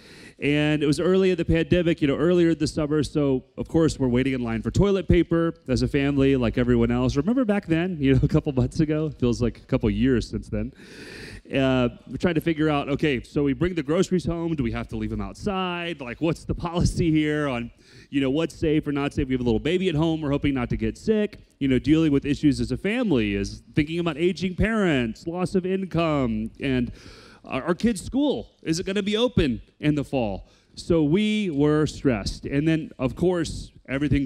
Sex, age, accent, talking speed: male, 30-49, American, 225 wpm